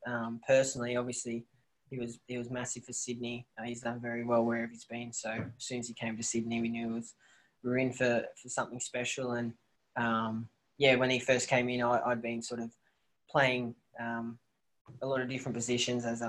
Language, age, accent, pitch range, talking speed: English, 20-39, Australian, 115-125 Hz, 215 wpm